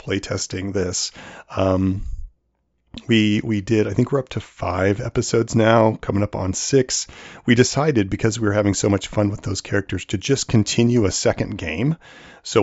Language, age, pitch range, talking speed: English, 40-59, 95-115 Hz, 175 wpm